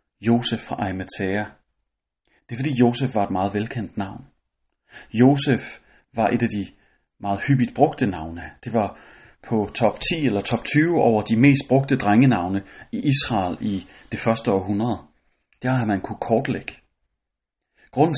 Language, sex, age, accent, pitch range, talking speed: Danish, male, 30-49, native, 100-130 Hz, 150 wpm